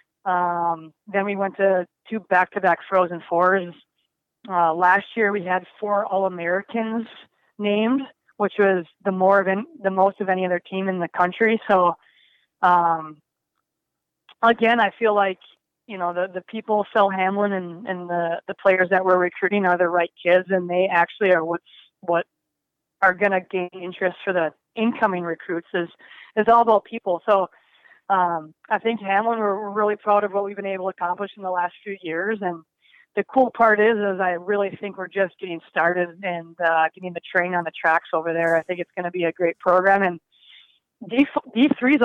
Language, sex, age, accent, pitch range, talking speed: English, female, 20-39, American, 175-205 Hz, 190 wpm